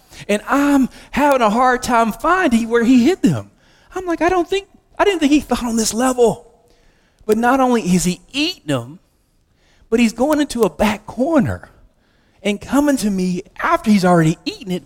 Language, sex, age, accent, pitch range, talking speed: English, male, 40-59, American, 175-240 Hz, 190 wpm